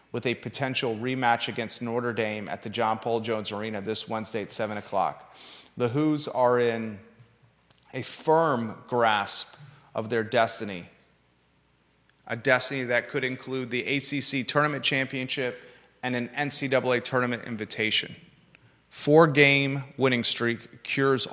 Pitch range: 110-130 Hz